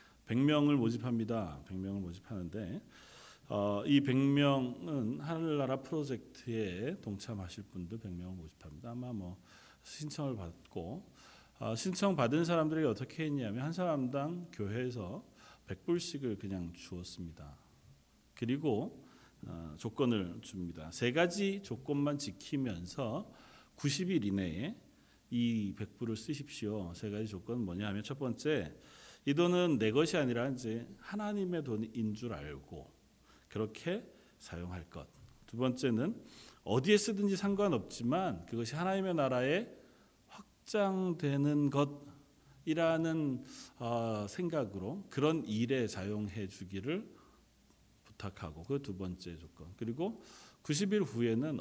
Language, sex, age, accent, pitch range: Korean, male, 40-59, native, 100-150 Hz